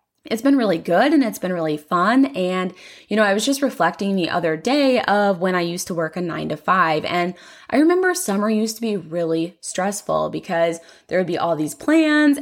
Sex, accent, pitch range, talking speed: female, American, 170-240 Hz, 215 wpm